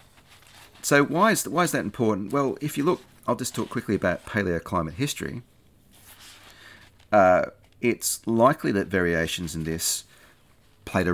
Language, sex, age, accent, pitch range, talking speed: English, male, 40-59, Australian, 80-105 Hz, 145 wpm